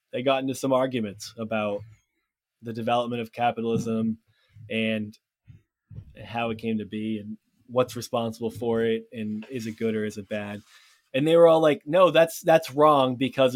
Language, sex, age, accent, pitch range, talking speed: English, male, 20-39, American, 110-135 Hz, 175 wpm